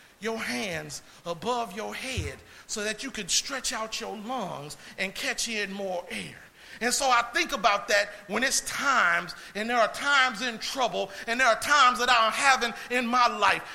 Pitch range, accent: 225-310 Hz, American